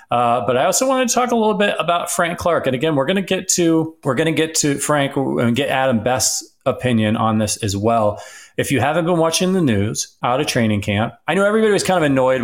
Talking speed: 255 wpm